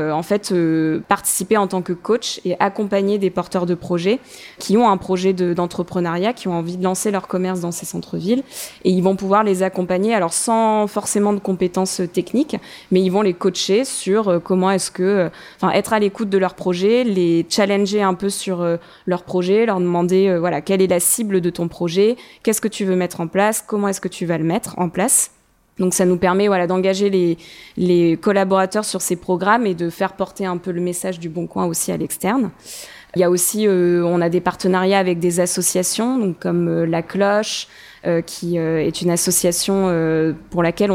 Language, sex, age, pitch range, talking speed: French, female, 20-39, 175-200 Hz, 210 wpm